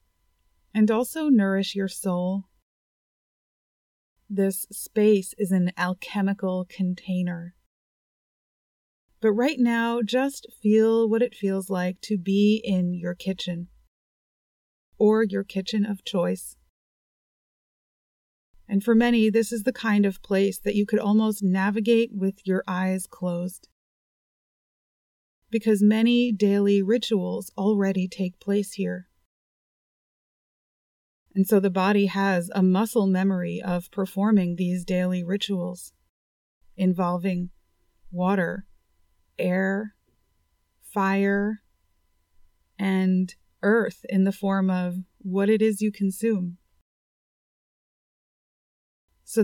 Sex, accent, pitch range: female, American, 180-210 Hz